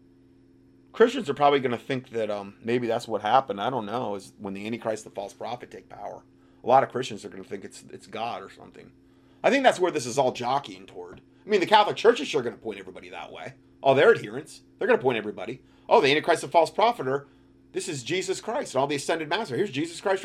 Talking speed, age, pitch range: 255 wpm, 30-49, 90-145 Hz